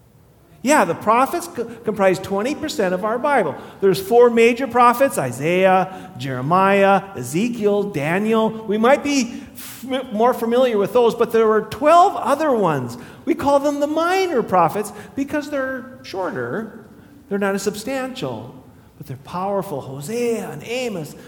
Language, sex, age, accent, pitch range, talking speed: English, male, 40-59, American, 185-275 Hz, 135 wpm